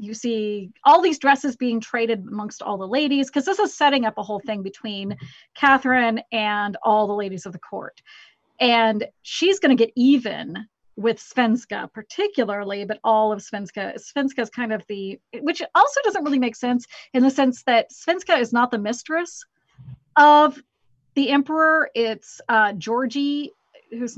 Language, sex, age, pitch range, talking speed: English, female, 30-49, 205-255 Hz, 170 wpm